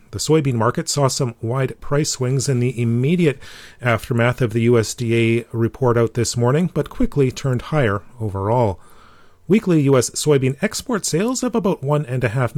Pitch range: 115-150 Hz